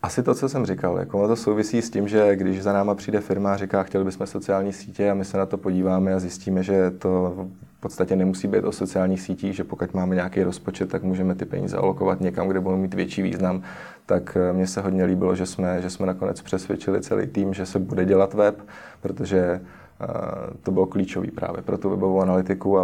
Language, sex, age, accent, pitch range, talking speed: Czech, male, 20-39, native, 95-100 Hz, 215 wpm